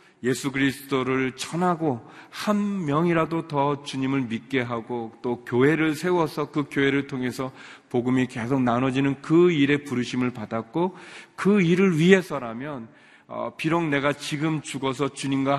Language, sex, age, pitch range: Korean, male, 40-59, 110-145 Hz